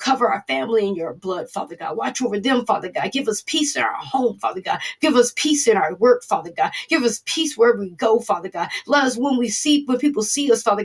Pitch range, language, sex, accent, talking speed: 220-270 Hz, English, female, American, 260 wpm